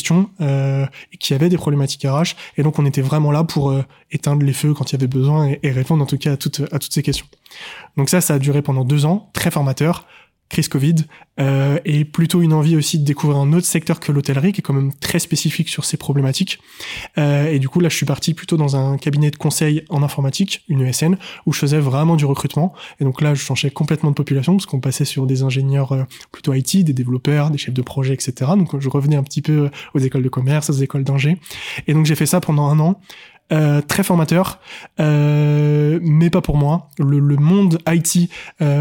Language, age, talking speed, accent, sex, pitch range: French, 20-39, 235 wpm, French, male, 140-165 Hz